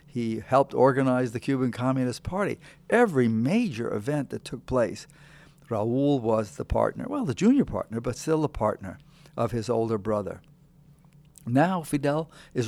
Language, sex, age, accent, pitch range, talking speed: English, male, 60-79, American, 115-150 Hz, 150 wpm